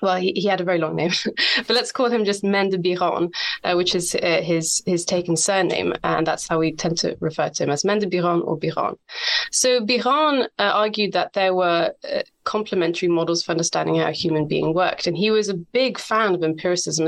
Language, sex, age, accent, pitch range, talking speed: English, female, 20-39, British, 170-215 Hz, 220 wpm